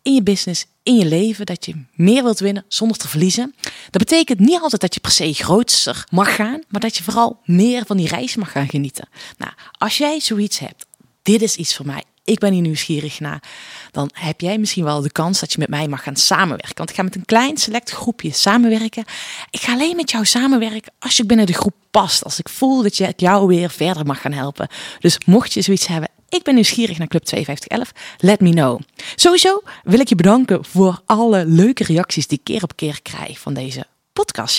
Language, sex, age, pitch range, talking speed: Dutch, female, 20-39, 165-225 Hz, 225 wpm